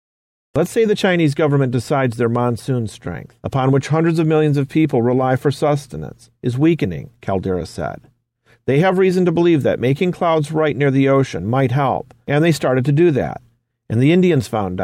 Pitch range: 115-150 Hz